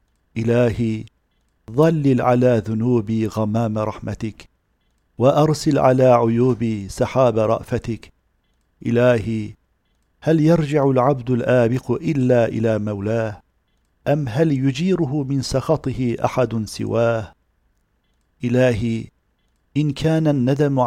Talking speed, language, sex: 85 wpm, Turkish, male